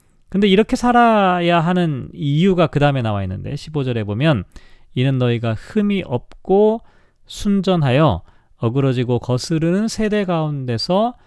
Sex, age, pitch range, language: male, 40-59, 130-185 Hz, Korean